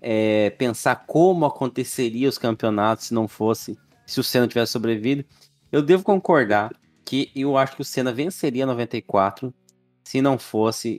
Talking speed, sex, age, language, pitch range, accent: 155 wpm, male, 20-39, Portuguese, 120-170 Hz, Brazilian